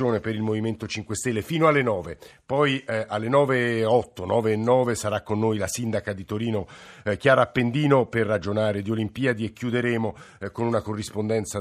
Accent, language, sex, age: native, Italian, male, 50-69